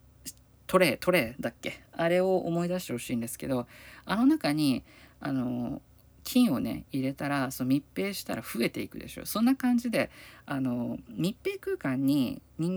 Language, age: Japanese, 50-69